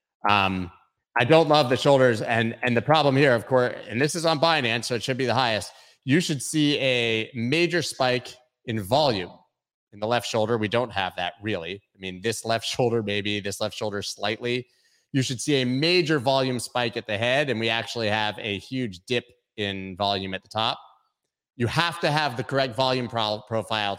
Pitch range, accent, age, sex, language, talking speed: 105-125 Hz, American, 30-49, male, English, 205 wpm